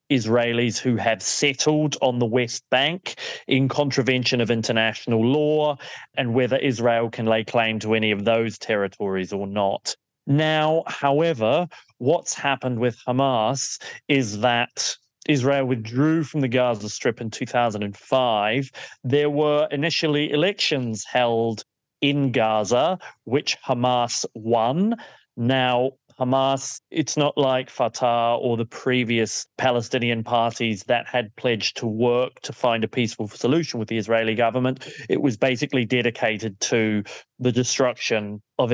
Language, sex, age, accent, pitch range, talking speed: English, male, 30-49, British, 115-135 Hz, 130 wpm